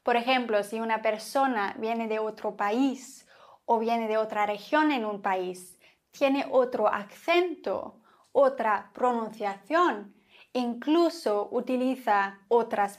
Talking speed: 115 wpm